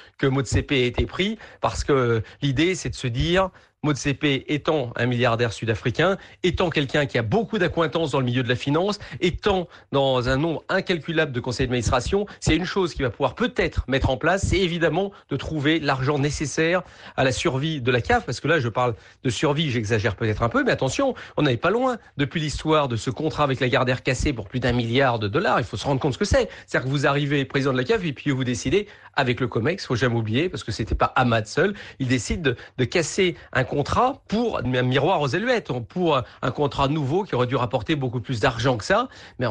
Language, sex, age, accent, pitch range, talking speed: English, male, 40-59, French, 125-165 Hz, 230 wpm